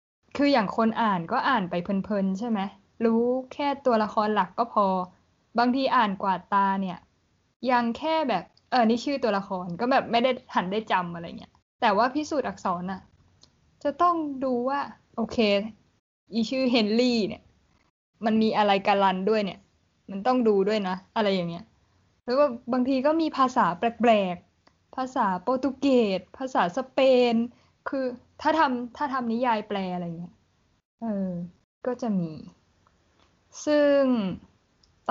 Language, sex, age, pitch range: Thai, female, 10-29, 195-255 Hz